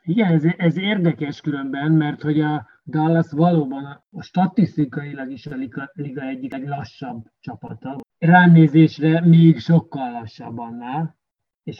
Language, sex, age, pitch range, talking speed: Hungarian, male, 30-49, 130-160 Hz, 130 wpm